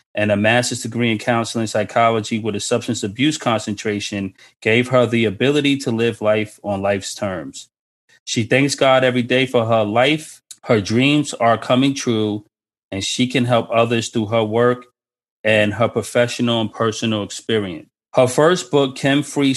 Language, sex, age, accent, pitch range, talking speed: English, male, 30-49, American, 110-130 Hz, 165 wpm